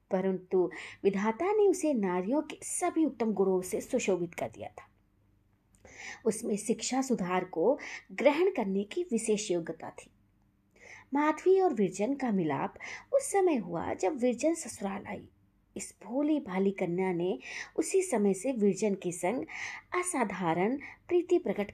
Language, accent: Hindi, native